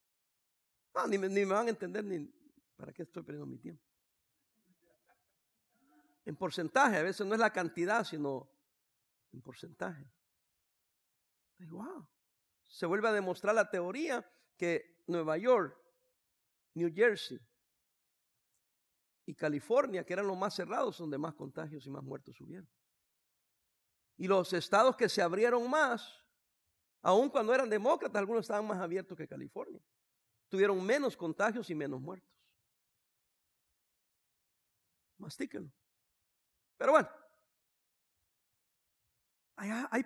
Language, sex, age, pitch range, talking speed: English, male, 60-79, 170-235 Hz, 120 wpm